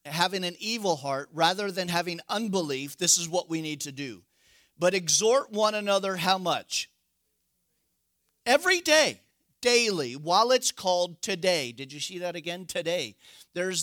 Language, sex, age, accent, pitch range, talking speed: English, male, 50-69, American, 165-210 Hz, 150 wpm